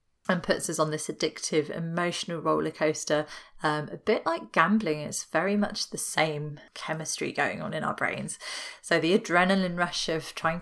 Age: 30-49